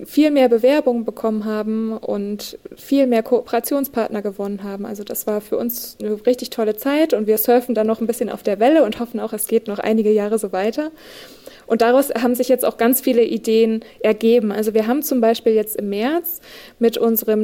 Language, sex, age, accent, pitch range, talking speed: German, female, 20-39, German, 215-260 Hz, 205 wpm